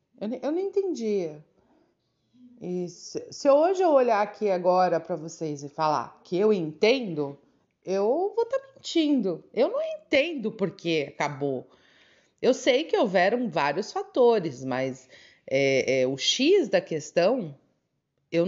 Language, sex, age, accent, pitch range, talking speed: Portuguese, female, 30-49, Brazilian, 160-220 Hz, 135 wpm